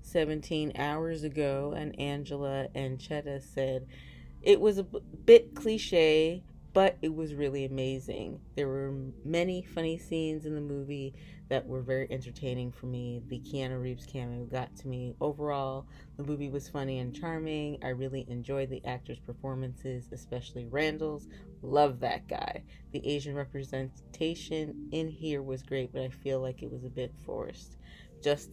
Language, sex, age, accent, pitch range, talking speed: English, female, 30-49, American, 130-155 Hz, 155 wpm